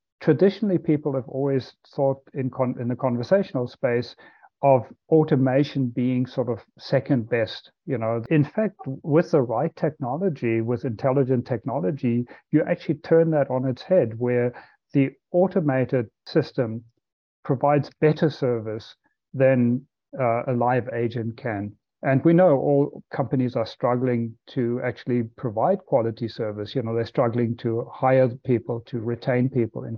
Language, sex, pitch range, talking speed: English, male, 120-145 Hz, 145 wpm